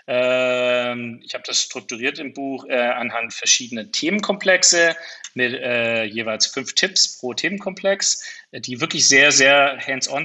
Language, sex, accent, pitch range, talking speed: German, male, German, 125-145 Hz, 115 wpm